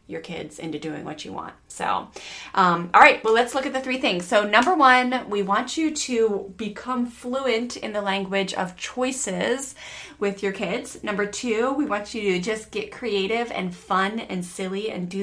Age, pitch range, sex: 20-39, 185-235 Hz, female